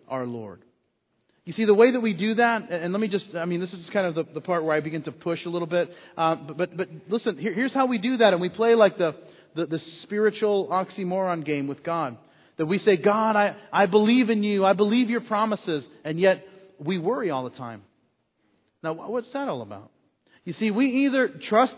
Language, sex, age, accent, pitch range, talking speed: English, male, 40-59, American, 165-210 Hz, 230 wpm